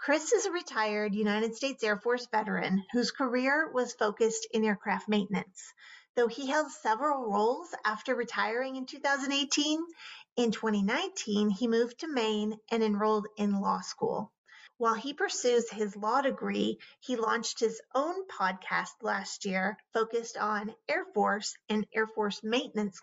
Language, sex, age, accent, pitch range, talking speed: English, female, 30-49, American, 215-265 Hz, 150 wpm